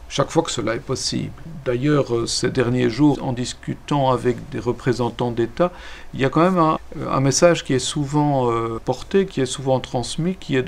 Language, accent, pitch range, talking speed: French, French, 120-150 Hz, 190 wpm